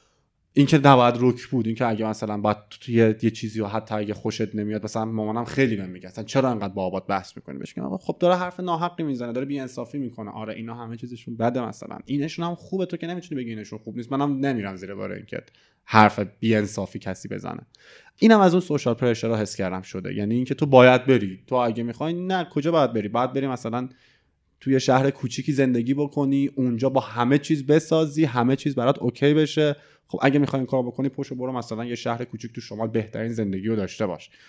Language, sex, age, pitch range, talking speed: Persian, male, 20-39, 110-140 Hz, 165 wpm